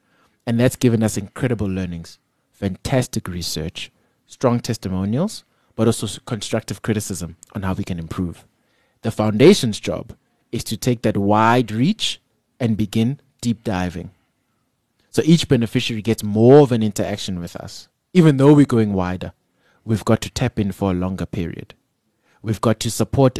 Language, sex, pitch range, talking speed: English, male, 100-120 Hz, 155 wpm